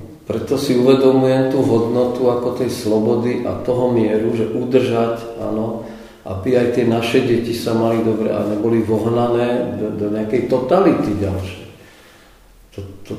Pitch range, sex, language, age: 105-125 Hz, male, Czech, 40-59